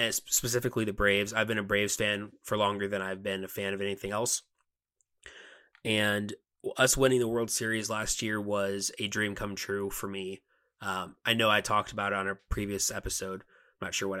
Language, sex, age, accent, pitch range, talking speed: English, male, 20-39, American, 100-115 Hz, 205 wpm